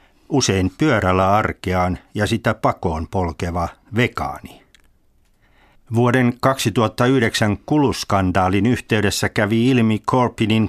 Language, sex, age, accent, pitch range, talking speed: Finnish, male, 60-79, native, 95-115 Hz, 85 wpm